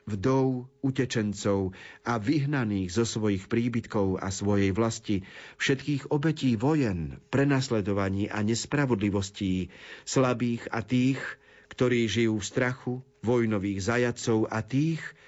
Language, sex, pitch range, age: Slovak, male, 105-130 Hz, 40-59